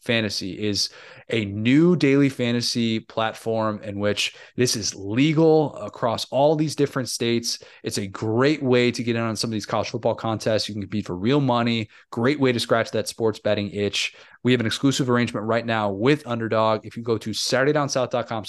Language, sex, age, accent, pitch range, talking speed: English, male, 20-39, American, 110-125 Hz, 190 wpm